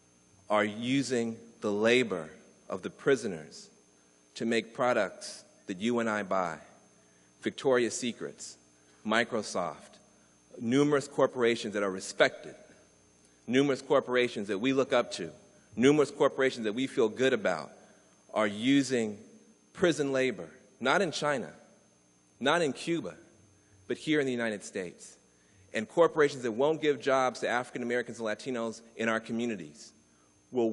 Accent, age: American, 40-59